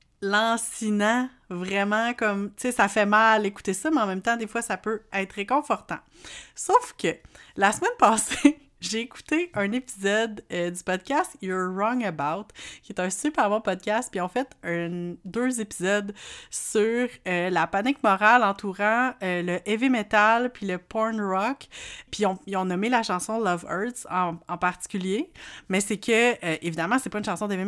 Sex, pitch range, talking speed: female, 190-245 Hz, 180 wpm